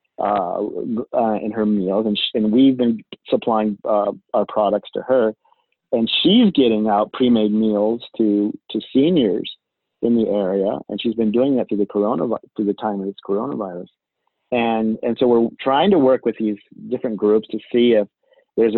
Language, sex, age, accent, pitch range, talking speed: English, male, 40-59, American, 110-125 Hz, 175 wpm